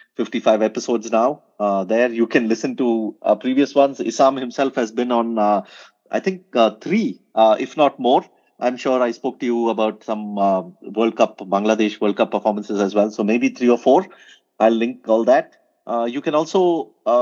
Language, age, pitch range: English, 30-49, 110-130 Hz